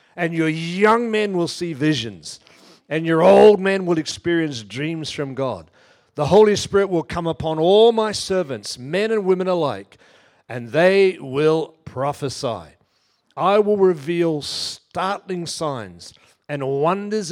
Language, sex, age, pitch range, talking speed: English, male, 50-69, 130-185 Hz, 140 wpm